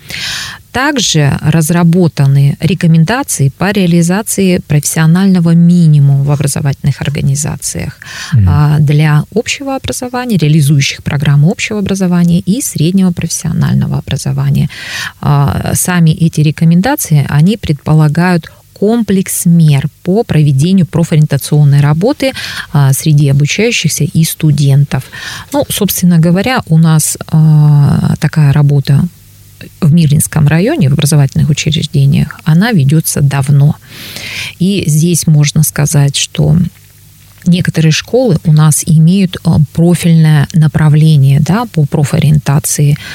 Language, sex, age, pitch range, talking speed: Russian, female, 20-39, 145-175 Hz, 95 wpm